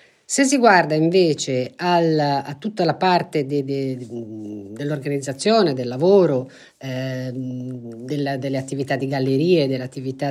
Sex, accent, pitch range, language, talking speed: female, native, 130-155 Hz, Italian, 135 wpm